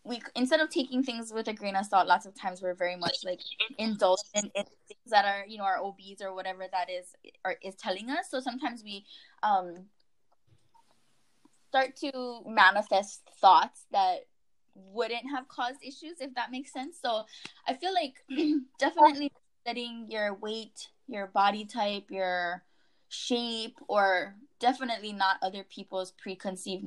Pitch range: 195-255 Hz